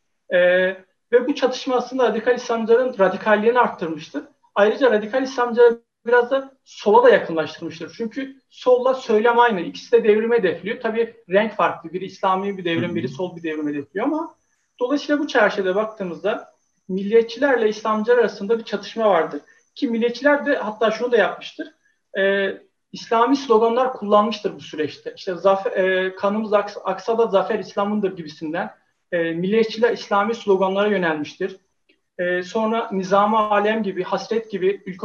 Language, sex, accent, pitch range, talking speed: Turkish, male, native, 190-250 Hz, 140 wpm